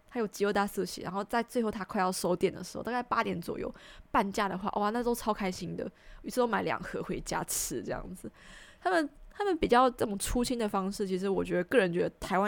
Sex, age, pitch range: female, 20-39, 185-235 Hz